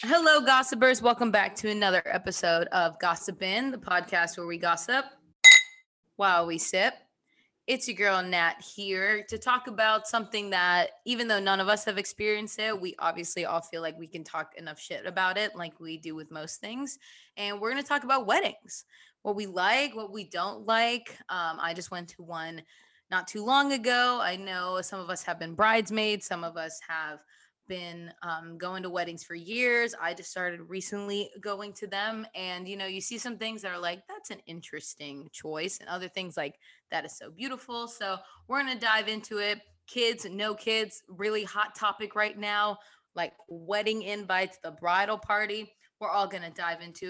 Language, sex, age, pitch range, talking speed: English, female, 20-39, 175-220 Hz, 195 wpm